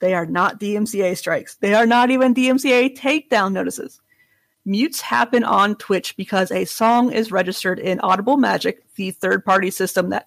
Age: 30-49